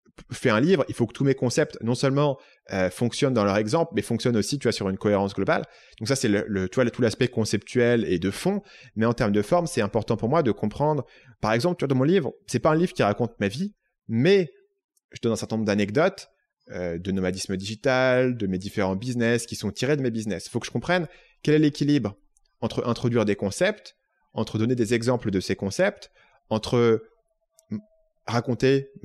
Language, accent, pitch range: French, French, 110-145 Hz